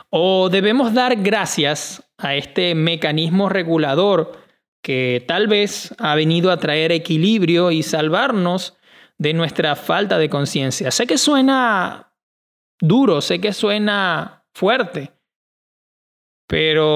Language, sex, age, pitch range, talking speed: Spanish, male, 20-39, 155-210 Hz, 115 wpm